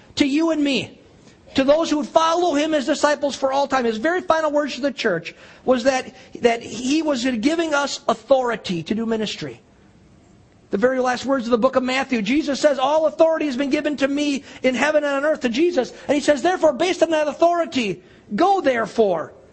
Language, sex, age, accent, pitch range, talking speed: English, male, 50-69, American, 185-275 Hz, 210 wpm